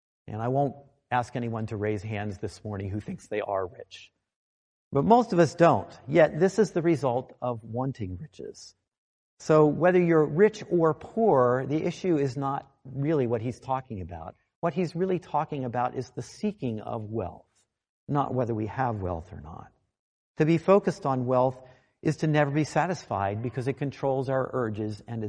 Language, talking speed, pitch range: English, 180 wpm, 110-155 Hz